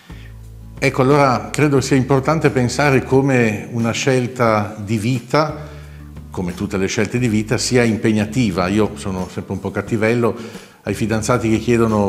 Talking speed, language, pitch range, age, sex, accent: 145 wpm, Italian, 95-115 Hz, 50-69, male, native